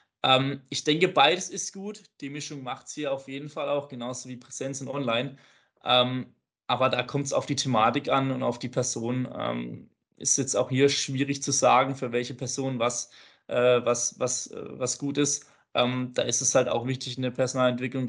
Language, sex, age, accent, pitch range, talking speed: German, male, 20-39, German, 125-140 Hz, 180 wpm